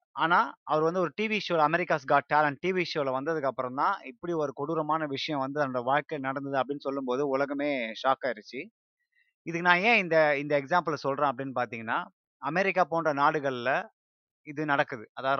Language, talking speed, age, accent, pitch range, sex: Tamil, 160 wpm, 30-49, native, 130-165 Hz, male